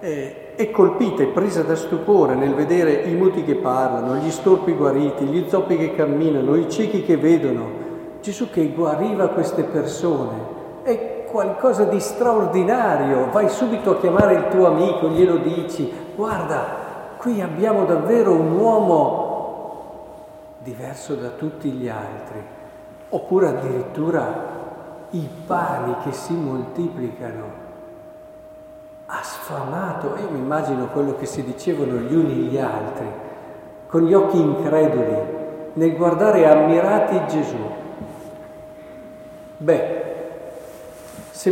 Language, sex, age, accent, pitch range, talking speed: Italian, male, 50-69, native, 155-200 Hz, 120 wpm